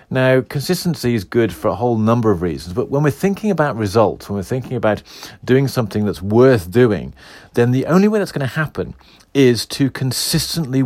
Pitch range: 105-135 Hz